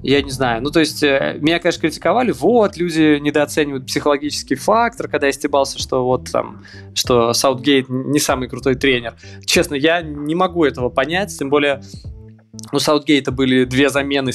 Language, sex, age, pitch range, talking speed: Russian, male, 20-39, 120-145 Hz, 165 wpm